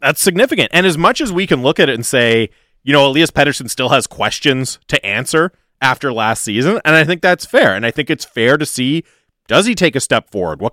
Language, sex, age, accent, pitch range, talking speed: English, male, 30-49, American, 115-155 Hz, 245 wpm